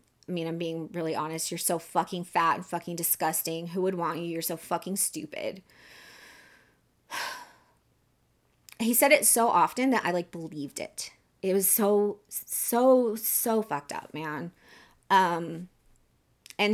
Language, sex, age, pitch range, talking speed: English, female, 20-39, 165-220 Hz, 145 wpm